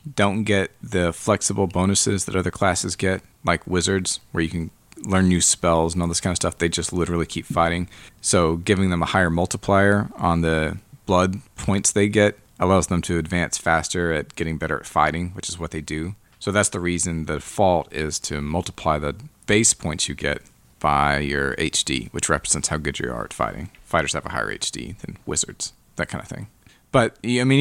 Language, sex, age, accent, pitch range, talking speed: English, male, 30-49, American, 80-100 Hz, 205 wpm